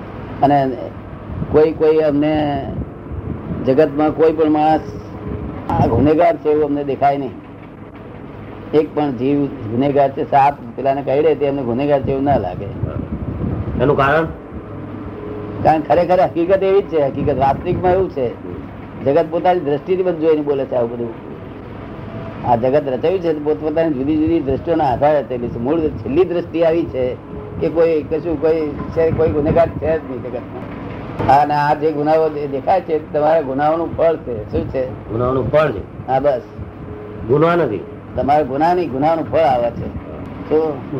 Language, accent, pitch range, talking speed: Gujarati, native, 125-155 Hz, 55 wpm